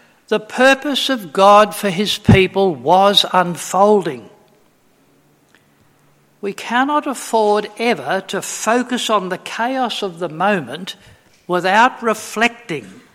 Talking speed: 105 wpm